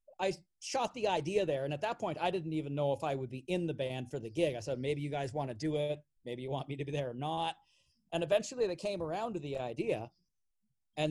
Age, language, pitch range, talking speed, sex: 40-59, English, 140-175 Hz, 270 wpm, male